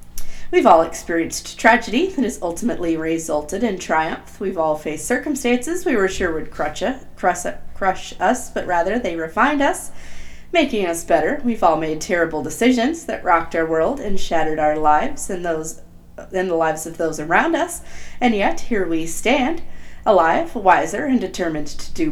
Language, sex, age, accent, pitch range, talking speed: English, female, 40-59, American, 155-240 Hz, 165 wpm